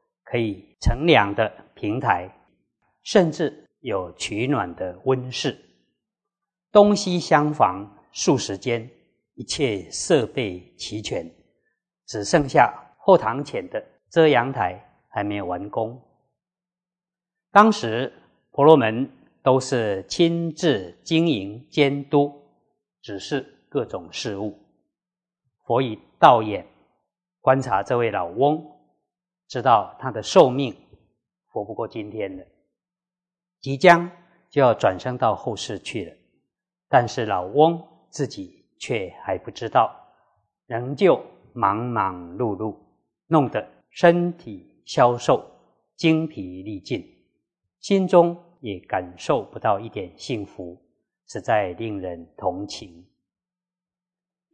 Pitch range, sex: 110-175 Hz, male